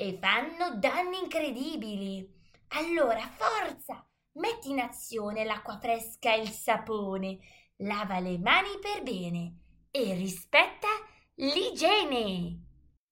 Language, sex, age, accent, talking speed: Italian, female, 20-39, native, 100 wpm